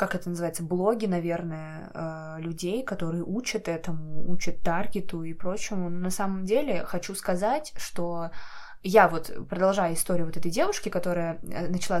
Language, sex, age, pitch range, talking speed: Russian, female, 20-39, 170-210 Hz, 145 wpm